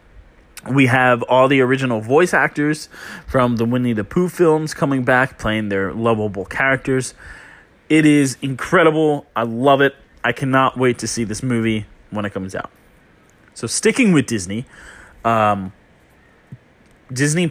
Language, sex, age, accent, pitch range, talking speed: English, male, 20-39, American, 105-135 Hz, 145 wpm